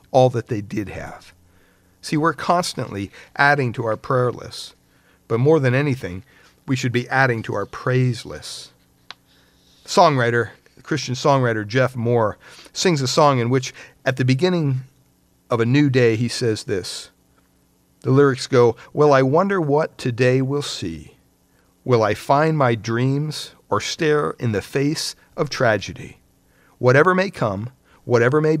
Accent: American